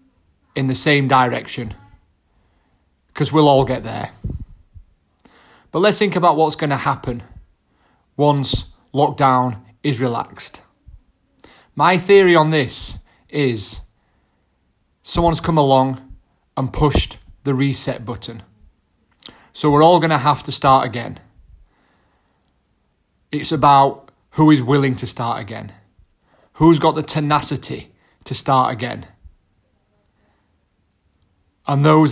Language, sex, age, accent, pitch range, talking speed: English, male, 30-49, British, 100-140 Hz, 110 wpm